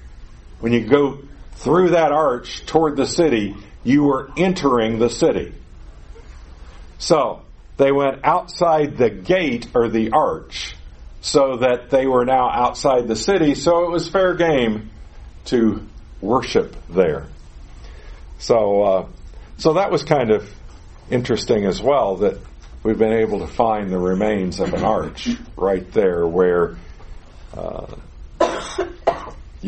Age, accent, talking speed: 50-69, American, 130 wpm